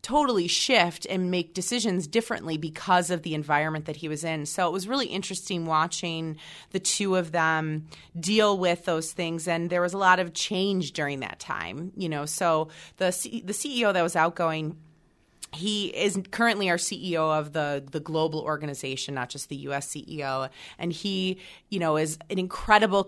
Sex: female